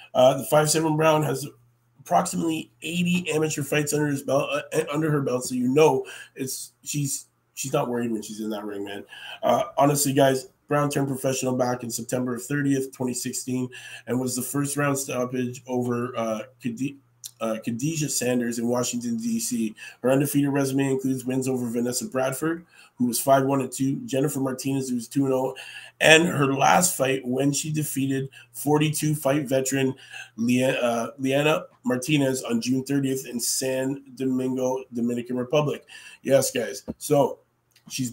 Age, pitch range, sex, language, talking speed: 20-39, 125-145 Hz, male, English, 160 wpm